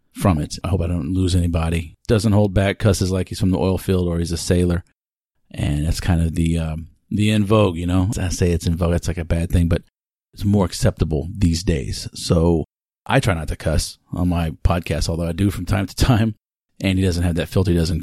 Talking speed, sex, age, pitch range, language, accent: 245 wpm, male, 40-59, 85-105 Hz, English, American